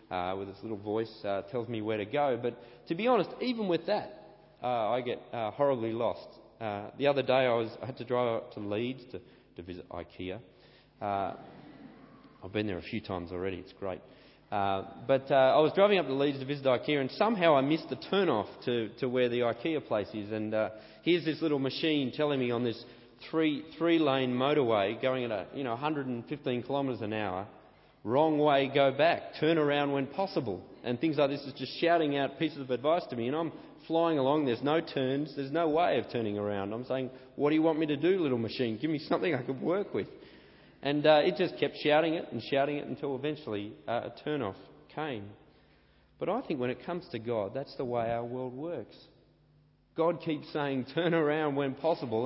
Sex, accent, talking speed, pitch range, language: male, Australian, 215 wpm, 115-150 Hz, English